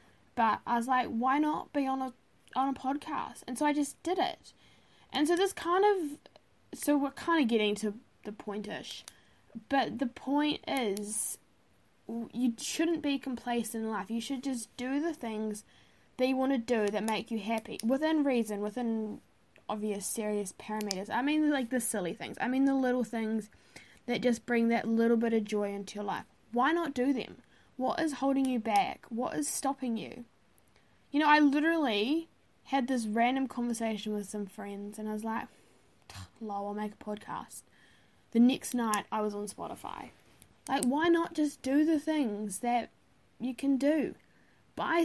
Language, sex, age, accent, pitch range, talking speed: English, female, 10-29, Australian, 225-285 Hz, 180 wpm